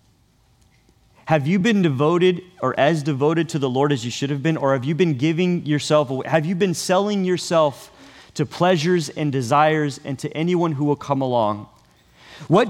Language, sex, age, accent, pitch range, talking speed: English, male, 30-49, American, 125-165 Hz, 185 wpm